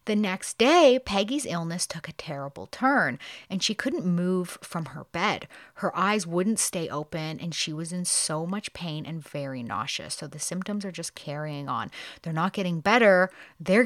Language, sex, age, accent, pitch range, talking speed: English, female, 30-49, American, 155-205 Hz, 185 wpm